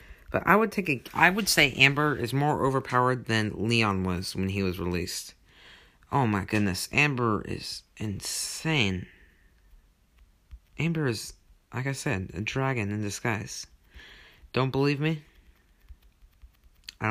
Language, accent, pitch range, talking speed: English, American, 100-125 Hz, 135 wpm